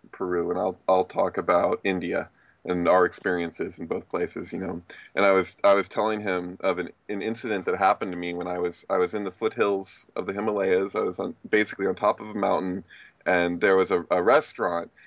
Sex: male